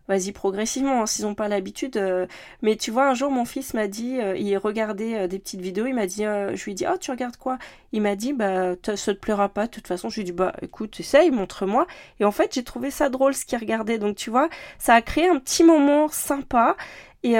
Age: 30-49